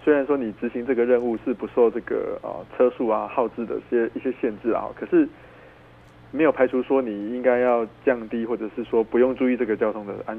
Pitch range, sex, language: 110-130 Hz, male, Chinese